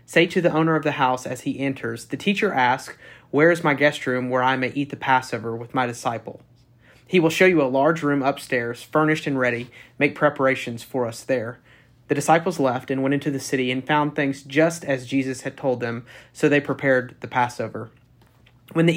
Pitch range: 125-150 Hz